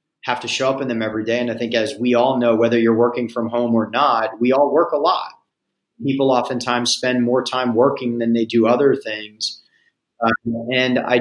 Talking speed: 220 wpm